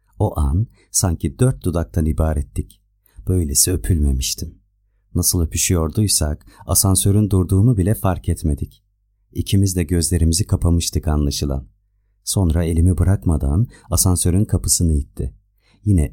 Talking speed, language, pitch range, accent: 100 wpm, Turkish, 80-100 Hz, native